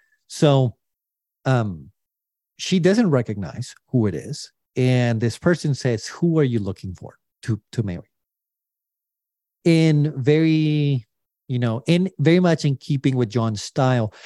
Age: 40-59